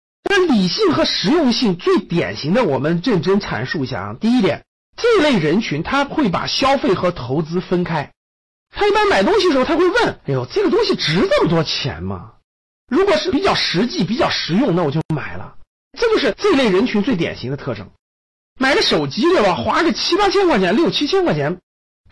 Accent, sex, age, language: native, male, 50-69, Chinese